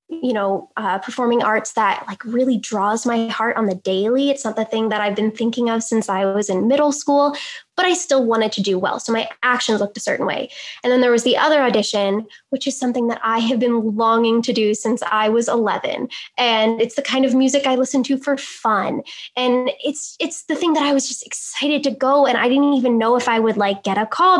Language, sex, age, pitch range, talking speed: English, female, 10-29, 220-275 Hz, 245 wpm